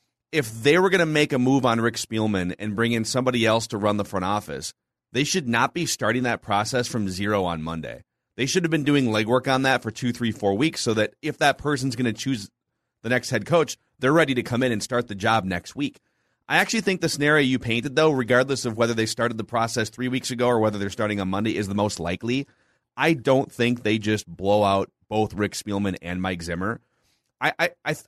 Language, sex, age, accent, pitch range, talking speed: English, male, 30-49, American, 105-135 Hz, 235 wpm